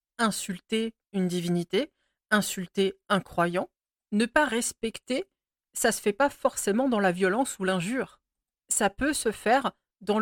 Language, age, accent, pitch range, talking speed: French, 40-59, French, 185-220 Hz, 145 wpm